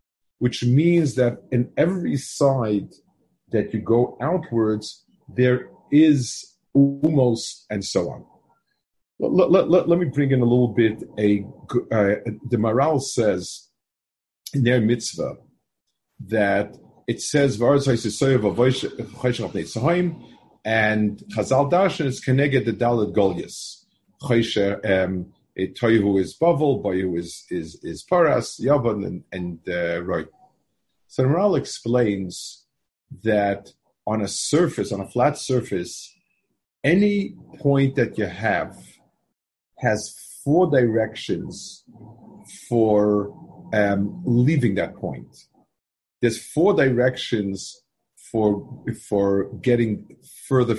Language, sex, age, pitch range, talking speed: English, male, 50-69, 105-135 Hz, 110 wpm